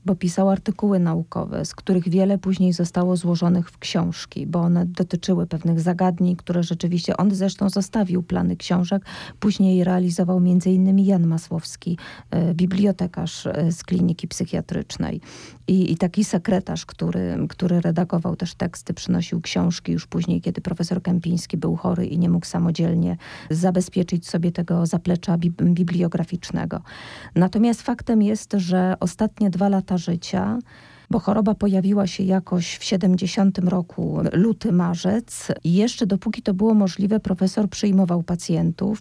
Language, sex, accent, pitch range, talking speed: Polish, female, native, 175-200 Hz, 135 wpm